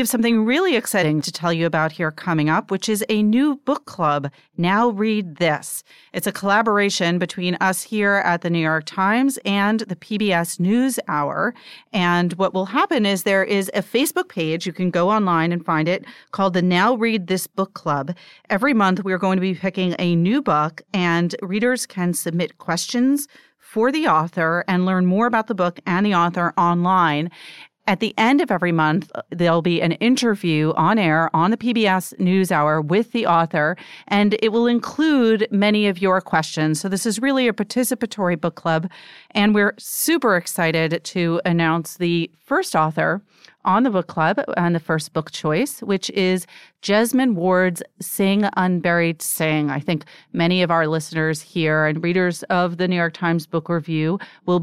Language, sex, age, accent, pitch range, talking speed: English, female, 40-59, American, 170-210 Hz, 180 wpm